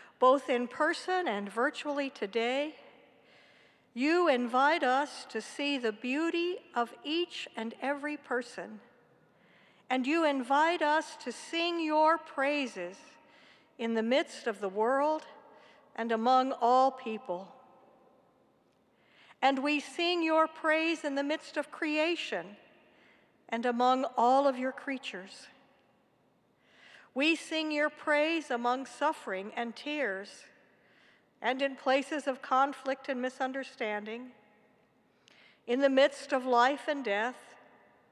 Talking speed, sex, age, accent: 115 wpm, female, 60-79, American